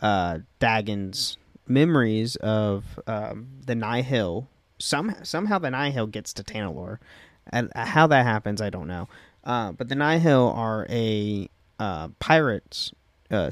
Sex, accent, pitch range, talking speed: male, American, 100-120 Hz, 135 wpm